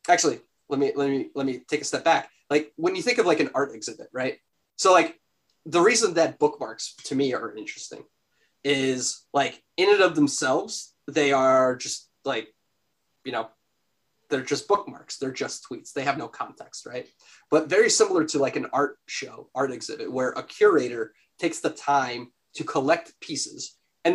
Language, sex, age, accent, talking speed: English, male, 20-39, American, 185 wpm